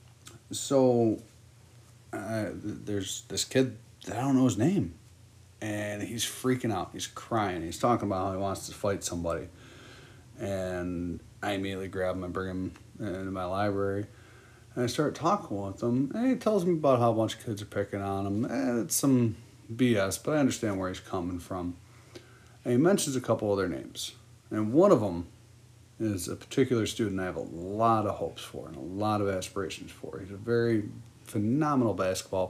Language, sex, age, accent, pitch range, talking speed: English, male, 30-49, American, 100-120 Hz, 185 wpm